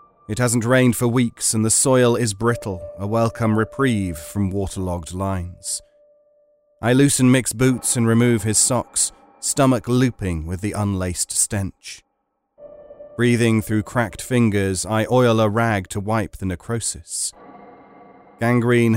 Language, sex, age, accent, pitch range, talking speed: English, male, 30-49, British, 105-130 Hz, 135 wpm